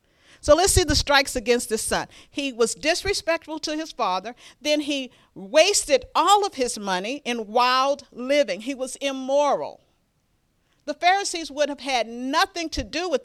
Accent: American